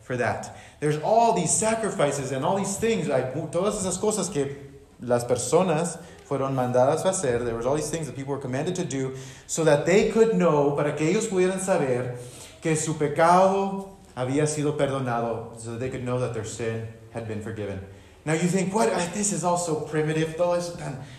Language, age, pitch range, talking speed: English, 30-49, 120-175 Hz, 195 wpm